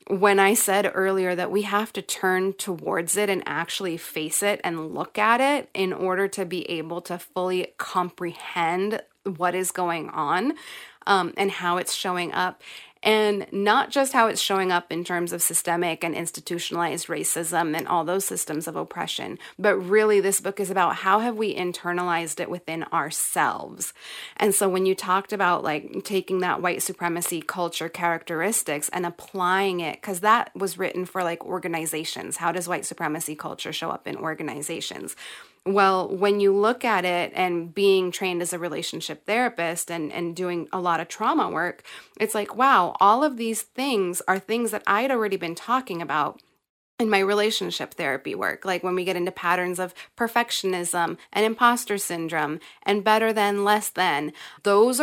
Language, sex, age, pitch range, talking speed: English, female, 30-49, 175-205 Hz, 175 wpm